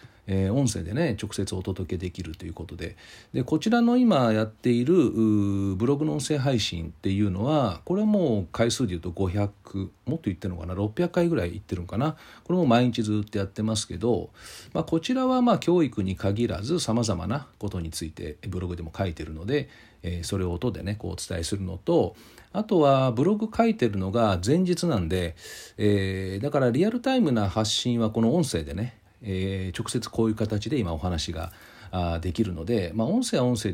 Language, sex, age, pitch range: Japanese, male, 40-59, 95-125 Hz